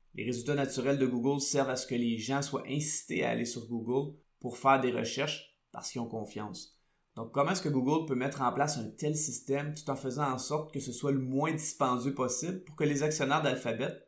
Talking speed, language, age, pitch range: 230 wpm, French, 20-39, 120-140 Hz